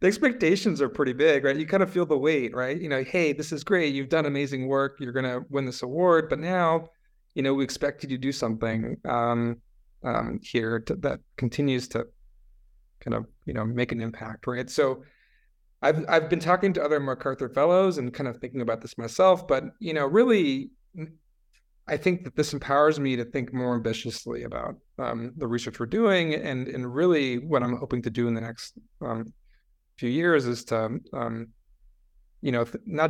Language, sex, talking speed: English, male, 200 wpm